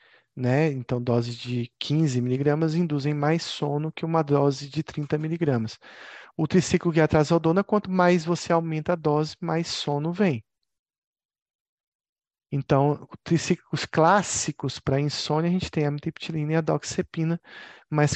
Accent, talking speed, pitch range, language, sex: Brazilian, 140 wpm, 135-175 Hz, Italian, male